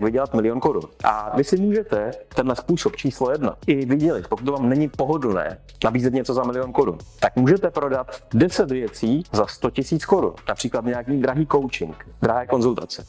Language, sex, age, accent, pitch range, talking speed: Czech, male, 30-49, native, 115-150 Hz, 175 wpm